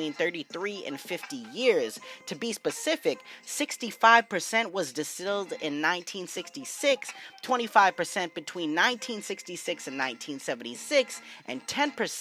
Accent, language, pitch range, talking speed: American, English, 150-220 Hz, 85 wpm